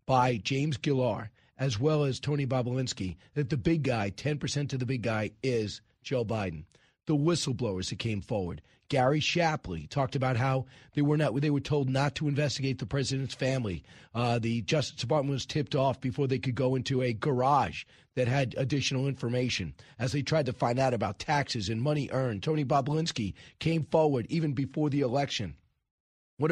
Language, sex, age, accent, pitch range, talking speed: English, male, 40-59, American, 120-155 Hz, 180 wpm